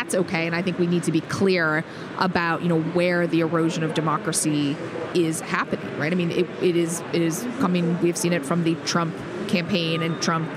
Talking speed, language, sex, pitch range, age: 205 wpm, English, female, 165-200 Hz, 30-49